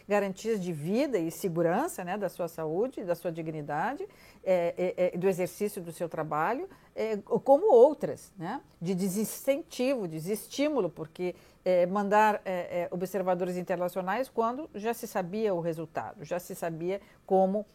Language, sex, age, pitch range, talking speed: Portuguese, female, 50-69, 175-235 Hz, 150 wpm